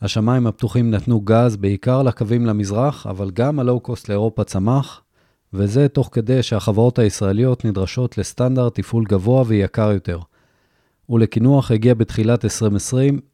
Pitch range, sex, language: 105-130 Hz, male, Hebrew